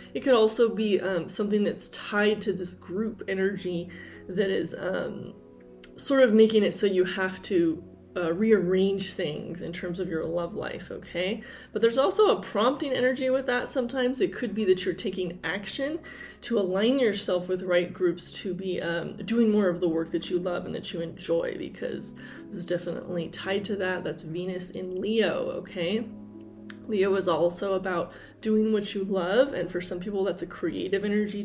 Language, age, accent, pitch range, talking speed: English, 20-39, American, 175-215 Hz, 185 wpm